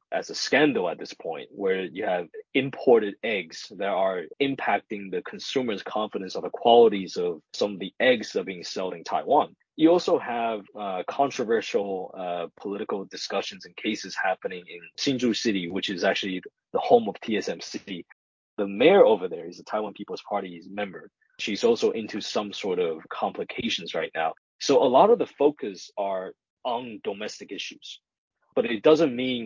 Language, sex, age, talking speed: English, male, 20-39, 175 wpm